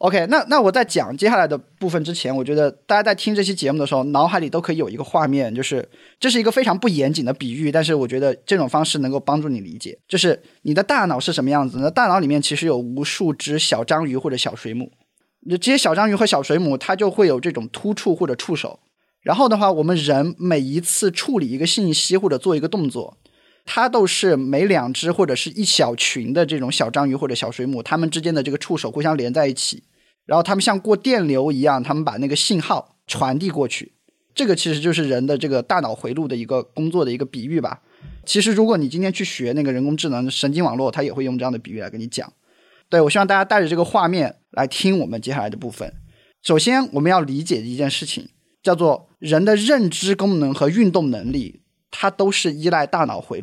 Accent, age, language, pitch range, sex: native, 20-39, Chinese, 140-195 Hz, male